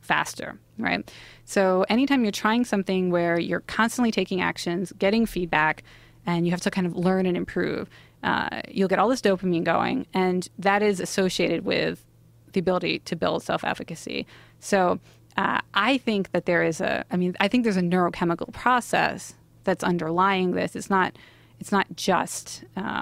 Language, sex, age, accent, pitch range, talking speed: English, female, 30-49, American, 165-195 Hz, 165 wpm